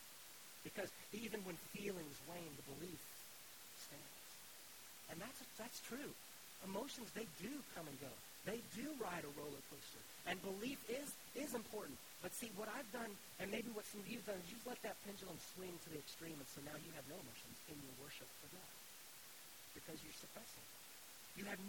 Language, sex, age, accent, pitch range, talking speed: English, male, 40-59, American, 145-195 Hz, 190 wpm